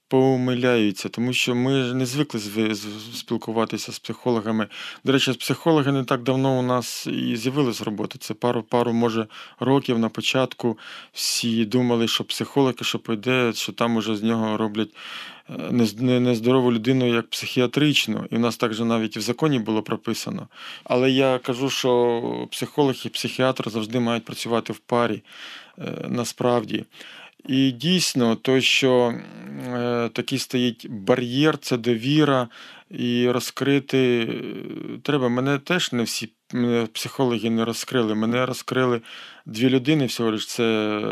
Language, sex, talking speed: Ukrainian, male, 135 wpm